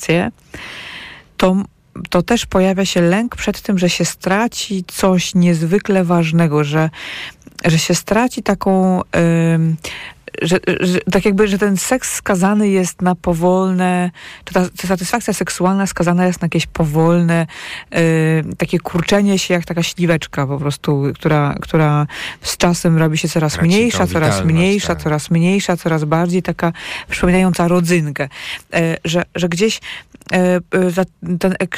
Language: Polish